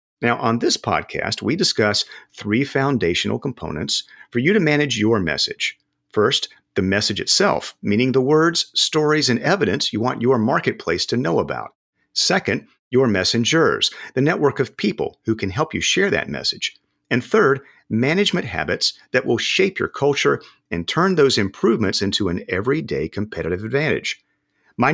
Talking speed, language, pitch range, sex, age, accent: 155 wpm, English, 110-150 Hz, male, 50-69, American